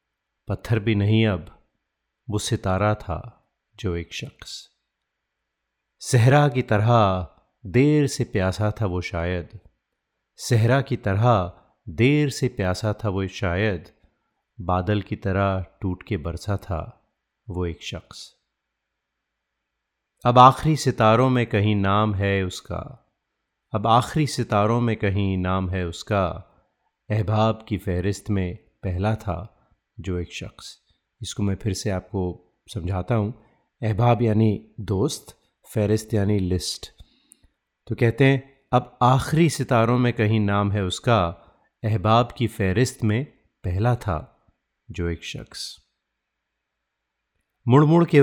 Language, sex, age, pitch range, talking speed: Hindi, male, 30-49, 95-120 Hz, 125 wpm